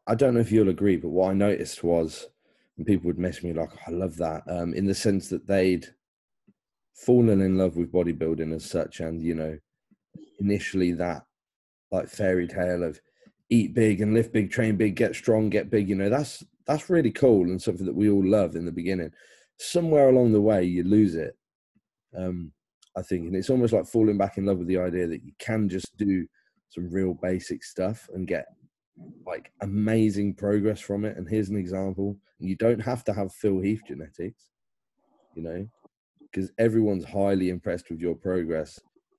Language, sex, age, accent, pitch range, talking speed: English, male, 30-49, British, 90-110 Hz, 195 wpm